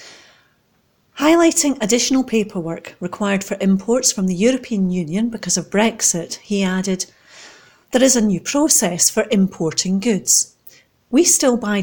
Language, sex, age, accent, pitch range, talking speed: English, female, 40-59, British, 180-235 Hz, 130 wpm